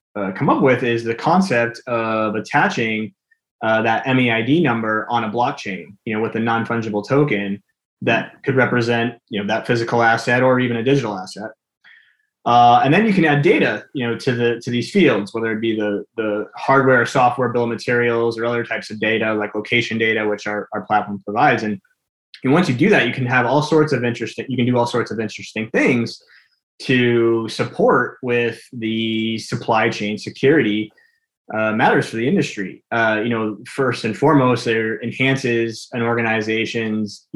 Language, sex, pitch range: English, male, 110-125 Hz